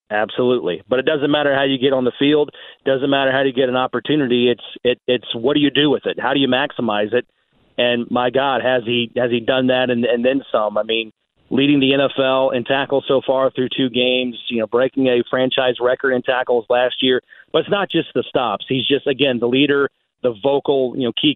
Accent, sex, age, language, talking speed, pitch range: American, male, 40-59, English, 235 wpm, 125-140 Hz